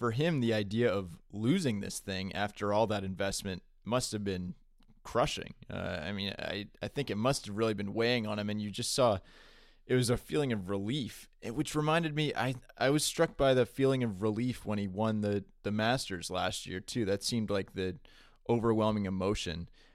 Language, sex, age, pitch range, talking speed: English, male, 20-39, 100-125 Hz, 205 wpm